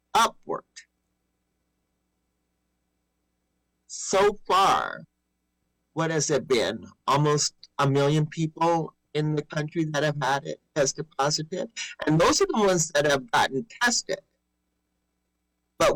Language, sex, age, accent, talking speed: English, male, 50-69, American, 115 wpm